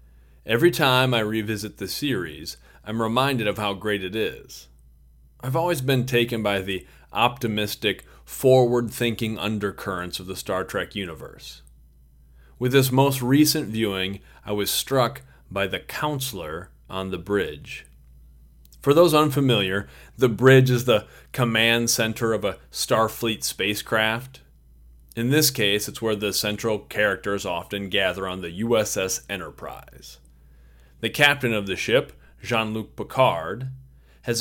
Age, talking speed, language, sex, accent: 40-59, 135 wpm, English, male, American